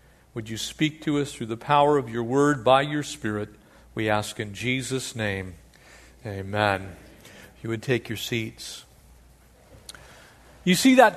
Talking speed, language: 155 wpm, English